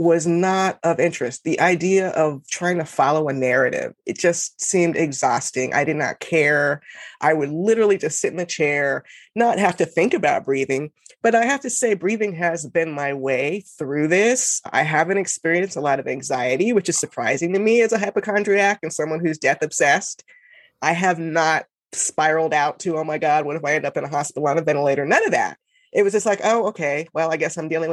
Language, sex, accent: English, female, American